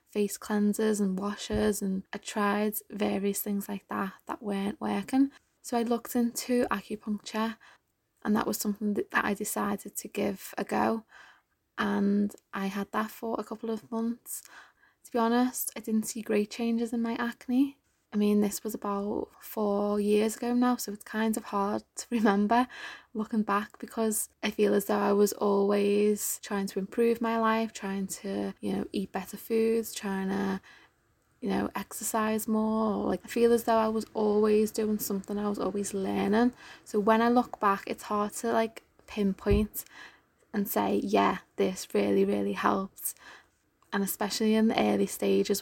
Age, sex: 20-39, female